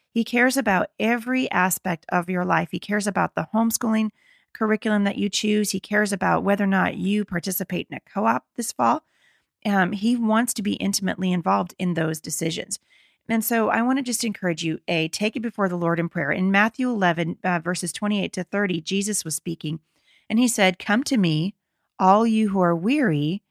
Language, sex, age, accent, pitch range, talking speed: English, female, 30-49, American, 180-225 Hz, 195 wpm